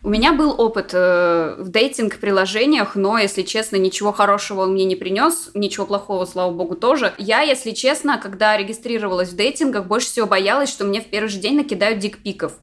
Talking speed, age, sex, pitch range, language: 185 wpm, 20-39, female, 185-230 Hz, Russian